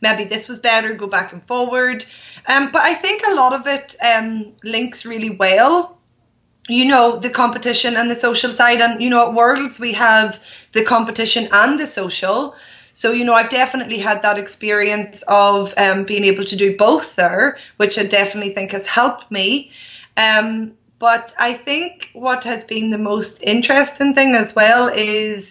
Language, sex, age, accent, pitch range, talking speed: English, female, 20-39, Irish, 205-245 Hz, 180 wpm